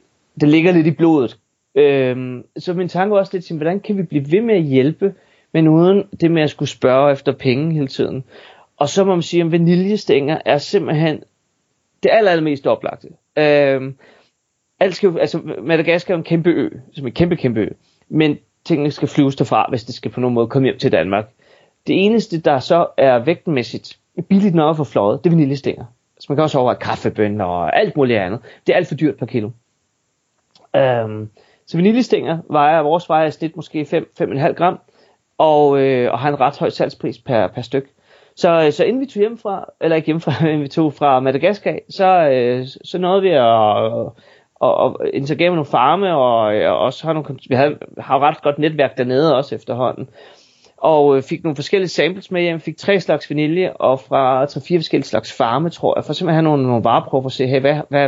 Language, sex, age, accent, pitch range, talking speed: Danish, male, 30-49, native, 135-170 Hz, 200 wpm